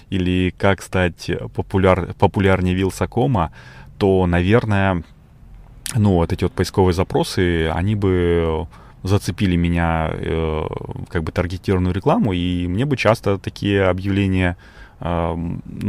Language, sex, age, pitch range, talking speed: Russian, male, 20-39, 85-100 Hz, 115 wpm